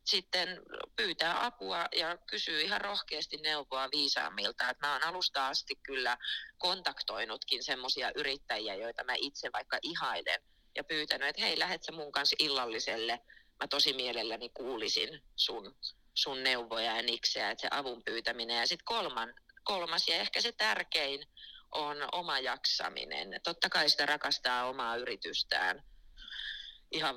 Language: Finnish